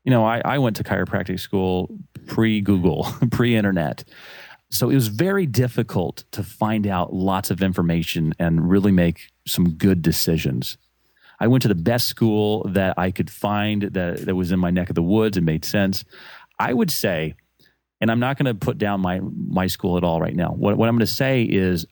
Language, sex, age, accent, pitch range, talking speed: English, male, 30-49, American, 90-115 Hz, 200 wpm